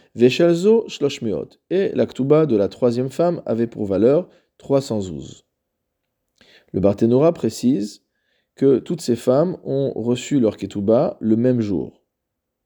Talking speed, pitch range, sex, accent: 120 wpm, 105-135 Hz, male, French